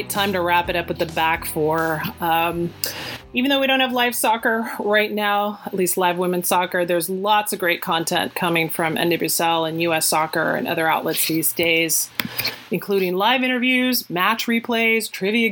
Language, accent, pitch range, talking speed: English, American, 165-210 Hz, 180 wpm